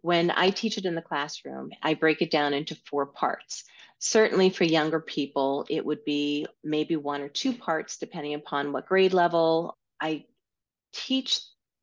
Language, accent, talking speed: English, American, 165 wpm